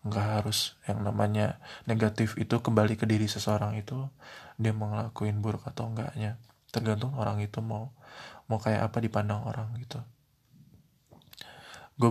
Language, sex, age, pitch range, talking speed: Indonesian, male, 20-39, 105-120 Hz, 135 wpm